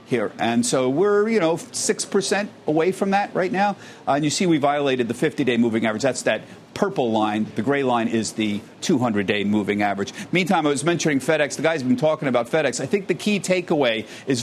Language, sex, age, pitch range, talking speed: English, male, 50-69, 125-175 Hz, 210 wpm